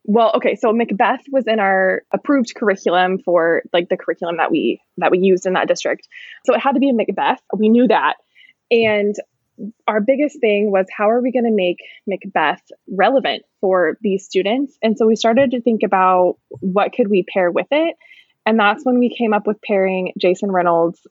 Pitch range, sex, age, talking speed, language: 185-245 Hz, female, 20-39, 200 wpm, English